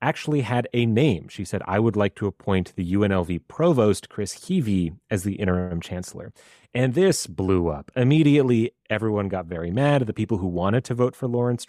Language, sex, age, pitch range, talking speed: English, male, 30-49, 95-120 Hz, 190 wpm